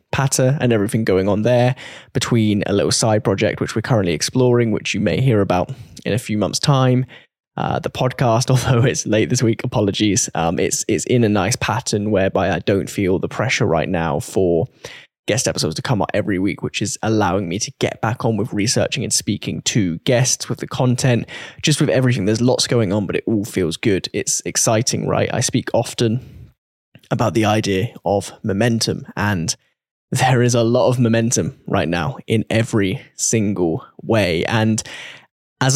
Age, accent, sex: 10-29, British, male